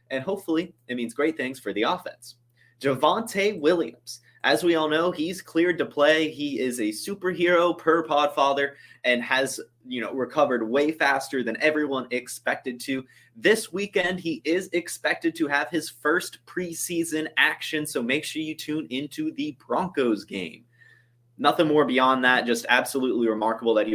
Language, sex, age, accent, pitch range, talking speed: English, male, 20-39, American, 120-160 Hz, 165 wpm